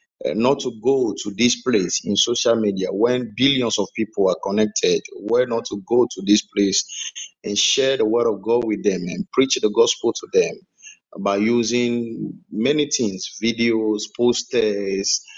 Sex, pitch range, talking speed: male, 105-130 Hz, 170 wpm